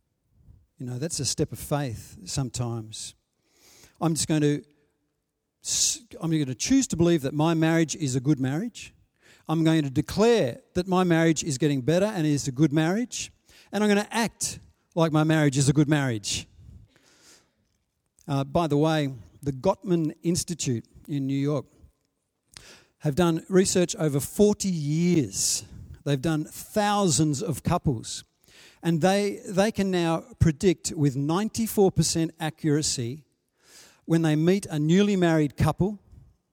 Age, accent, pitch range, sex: 50-69, Australian, 140-180 Hz, male